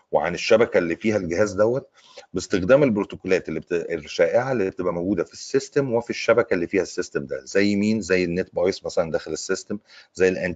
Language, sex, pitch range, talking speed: Arabic, male, 85-125 Hz, 180 wpm